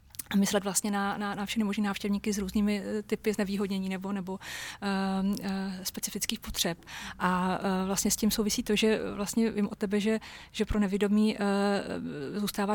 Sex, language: female, Czech